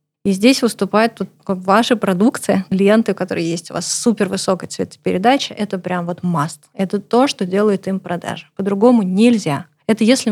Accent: native